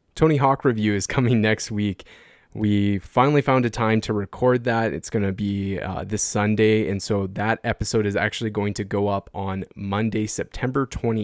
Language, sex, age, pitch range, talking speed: English, male, 20-39, 100-115 Hz, 185 wpm